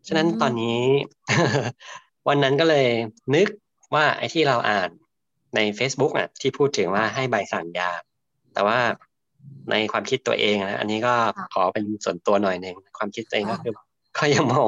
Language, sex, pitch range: Thai, male, 100-125 Hz